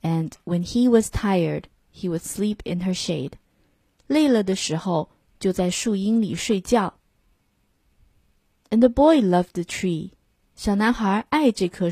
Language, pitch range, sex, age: Chinese, 175-240 Hz, female, 20-39